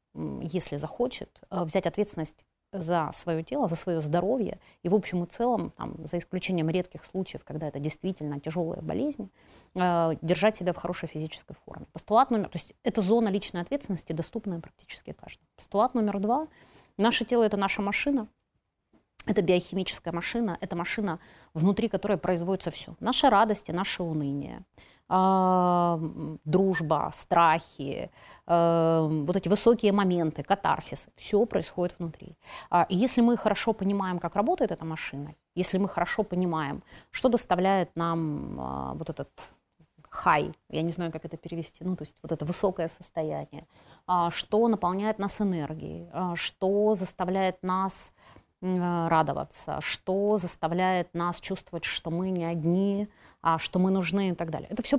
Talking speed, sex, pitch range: 140 wpm, female, 165-205 Hz